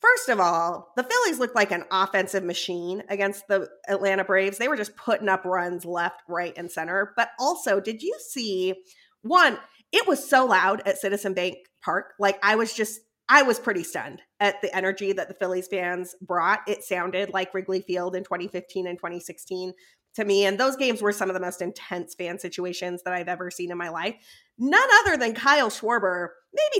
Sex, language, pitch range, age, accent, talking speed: female, English, 180-225 Hz, 30-49, American, 200 wpm